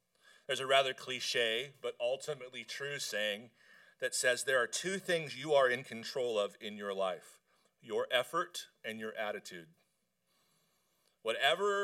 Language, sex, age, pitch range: English, male, 40-59, 115-165 Hz